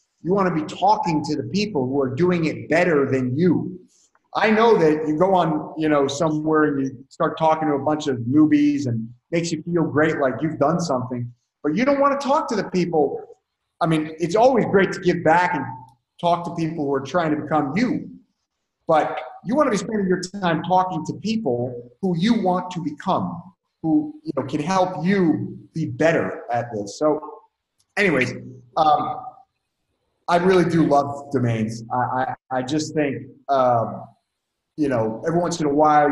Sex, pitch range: male, 135-175 Hz